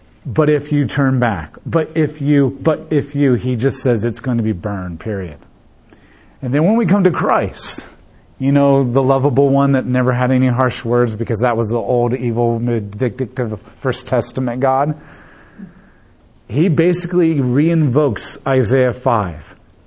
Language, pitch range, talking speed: English, 110-145 Hz, 165 wpm